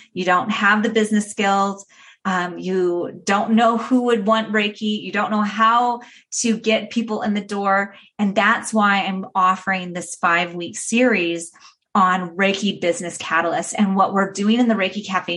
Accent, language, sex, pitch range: American, English, female, 185-225 Hz